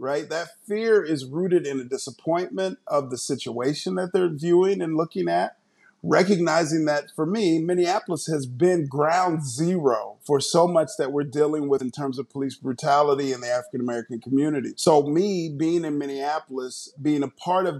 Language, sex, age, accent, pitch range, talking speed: English, male, 40-59, American, 140-175 Hz, 170 wpm